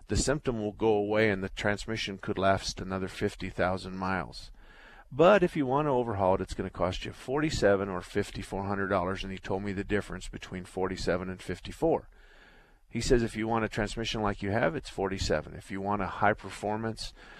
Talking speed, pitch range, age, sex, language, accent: 195 wpm, 95-120 Hz, 50-69, male, English, American